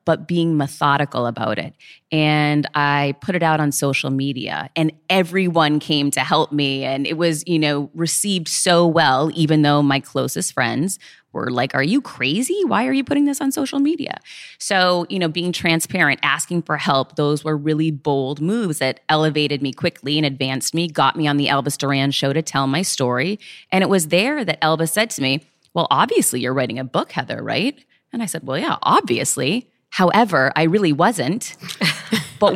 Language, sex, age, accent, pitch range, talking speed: English, female, 20-39, American, 145-195 Hz, 190 wpm